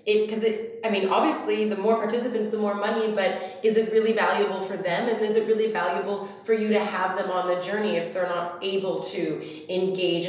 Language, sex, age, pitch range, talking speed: English, female, 20-39, 170-215 Hz, 220 wpm